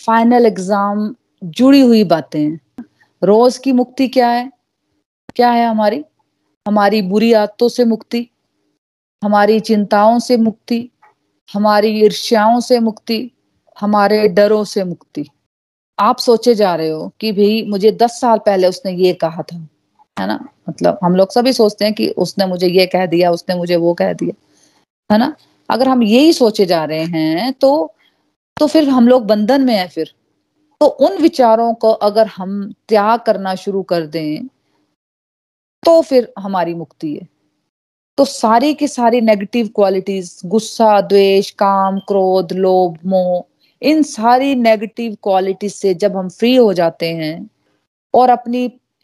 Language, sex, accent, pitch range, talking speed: Hindi, female, native, 190-240 Hz, 150 wpm